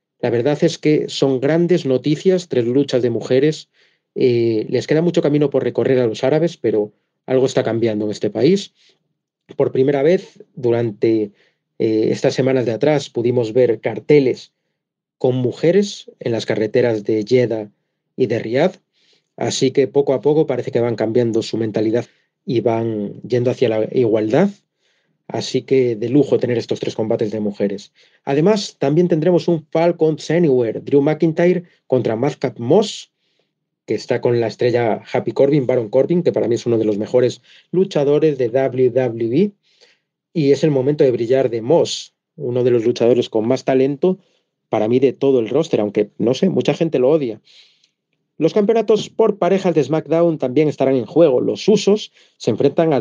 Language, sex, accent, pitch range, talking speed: Spanish, male, Spanish, 120-165 Hz, 170 wpm